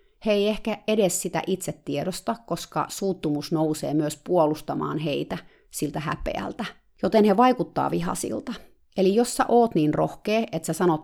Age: 30-49